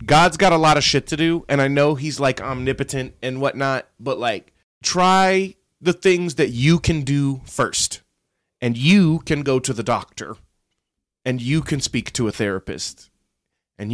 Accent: American